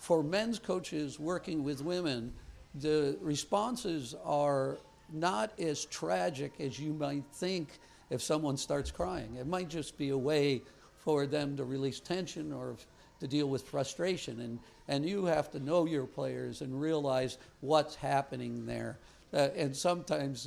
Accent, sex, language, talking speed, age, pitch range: American, male, English, 150 wpm, 60-79, 130-160 Hz